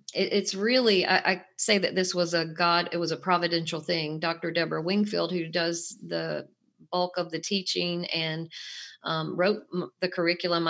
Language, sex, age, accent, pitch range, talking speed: English, female, 40-59, American, 165-190 Hz, 165 wpm